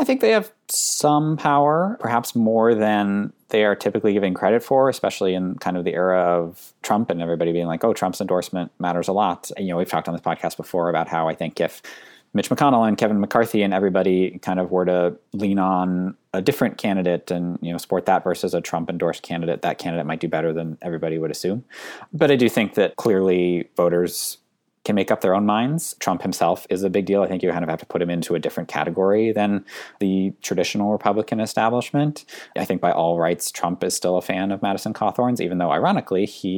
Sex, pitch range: male, 85-110 Hz